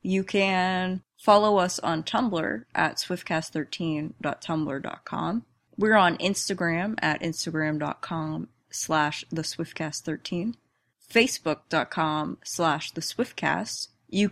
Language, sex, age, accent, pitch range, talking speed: English, female, 20-39, American, 155-195 Hz, 80 wpm